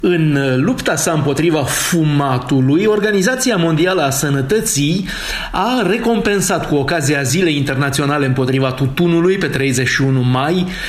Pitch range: 145-195 Hz